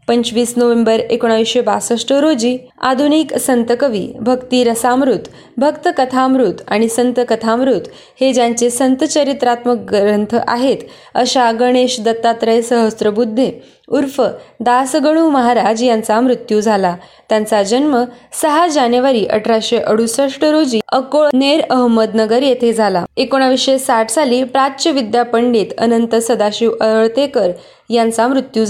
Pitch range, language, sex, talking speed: 225-265 Hz, Marathi, female, 105 wpm